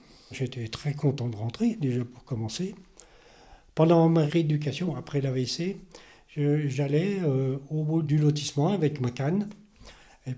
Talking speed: 125 wpm